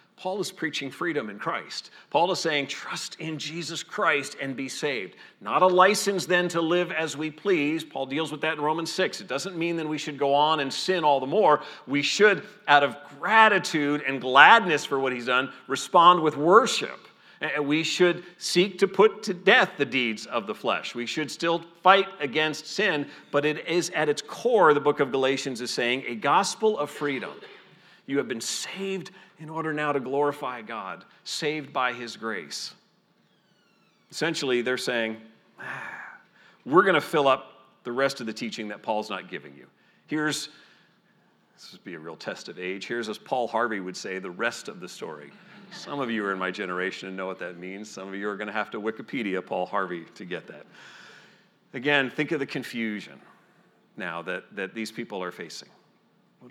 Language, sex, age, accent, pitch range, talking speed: English, male, 40-59, American, 125-170 Hz, 195 wpm